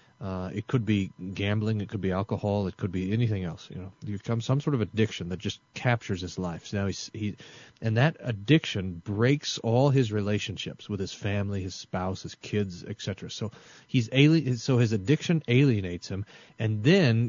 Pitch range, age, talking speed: 100-125 Hz, 30-49, 200 wpm